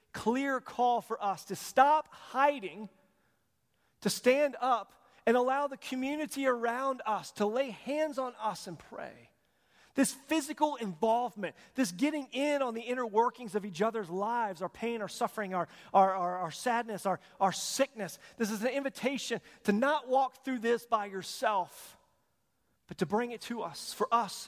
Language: English